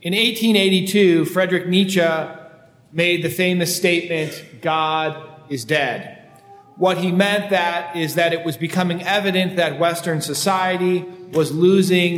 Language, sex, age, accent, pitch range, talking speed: English, male, 40-59, American, 145-180 Hz, 130 wpm